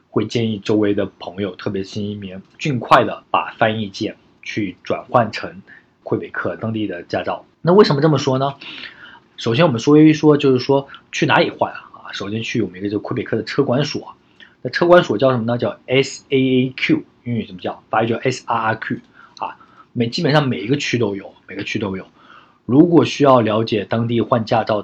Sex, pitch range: male, 105-130 Hz